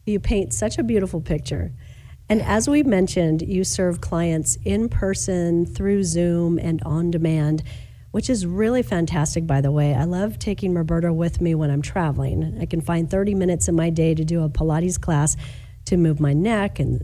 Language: English